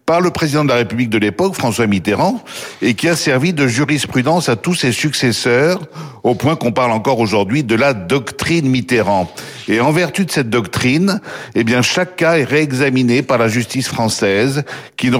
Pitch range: 120-155 Hz